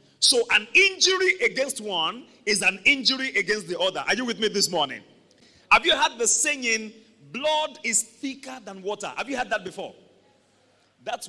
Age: 40-59